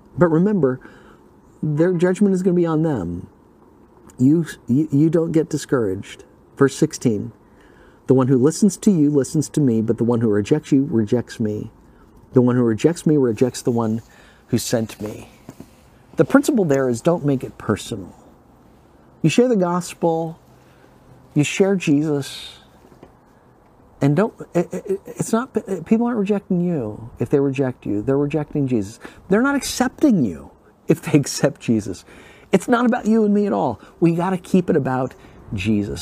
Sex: male